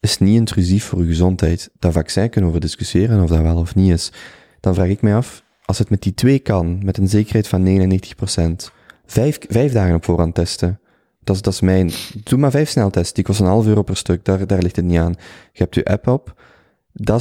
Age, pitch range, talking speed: 20-39, 90-110 Hz, 235 wpm